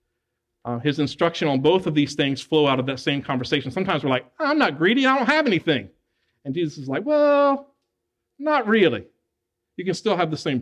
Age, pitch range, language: 50-69, 150-210 Hz, English